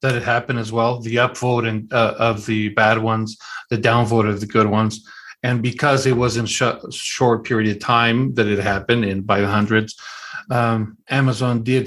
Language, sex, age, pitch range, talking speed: English, male, 50-69, 110-130 Hz, 200 wpm